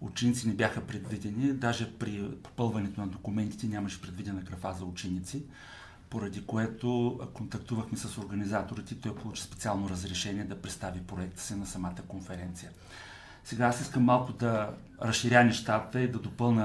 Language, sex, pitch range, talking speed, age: Bulgarian, male, 100-120 Hz, 150 wpm, 40-59